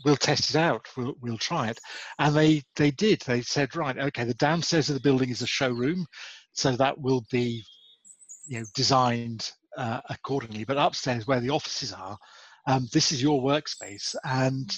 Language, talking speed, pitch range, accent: English, 185 wpm, 125-150 Hz, British